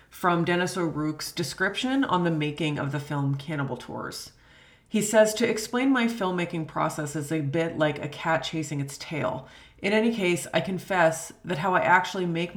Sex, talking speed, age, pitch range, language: female, 180 wpm, 30-49, 150-185 Hz, English